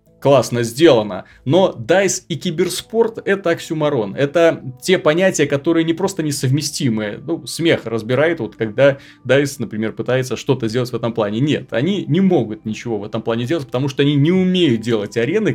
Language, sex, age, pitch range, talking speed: Russian, male, 30-49, 120-155 Hz, 165 wpm